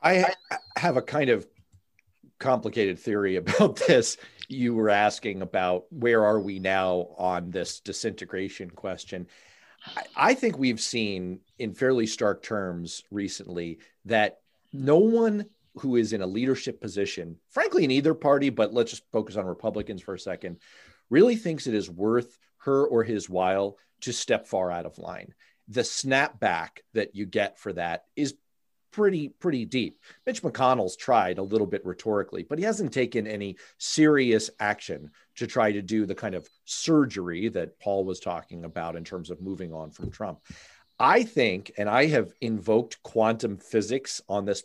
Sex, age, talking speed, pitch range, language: male, 40-59, 165 wpm, 95-135 Hz, English